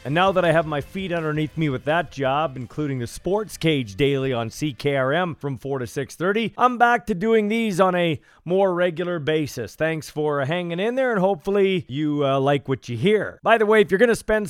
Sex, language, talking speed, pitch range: male, English, 225 wpm, 150-195 Hz